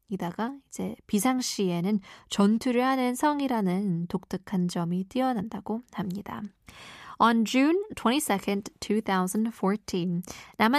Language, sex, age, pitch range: Korean, female, 20-39, 190-240 Hz